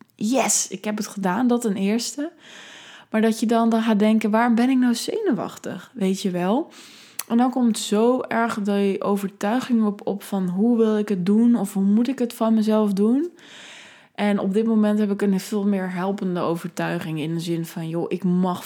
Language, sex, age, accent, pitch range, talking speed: Dutch, female, 20-39, Dutch, 180-220 Hz, 205 wpm